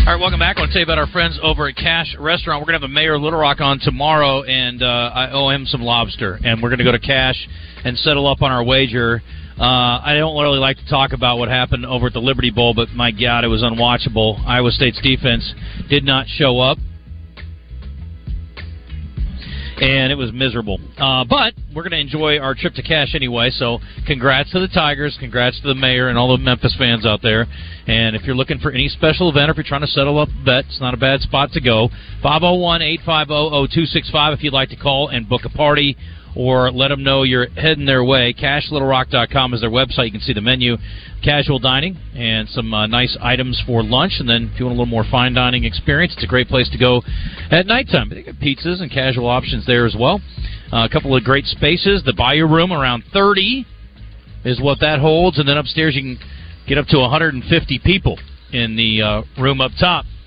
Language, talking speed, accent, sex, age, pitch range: English, 225 wpm, American, male, 40-59, 115-145 Hz